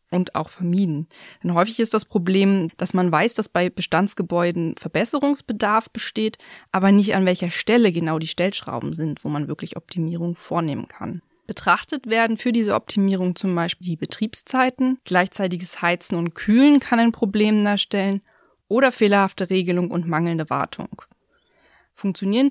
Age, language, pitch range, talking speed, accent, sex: 20-39, German, 175-220 Hz, 145 wpm, German, female